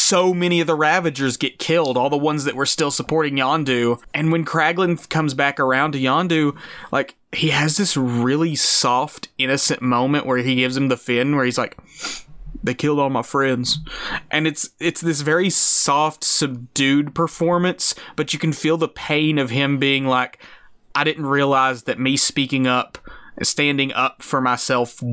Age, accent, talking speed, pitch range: 20-39, American, 175 wpm, 125-150 Hz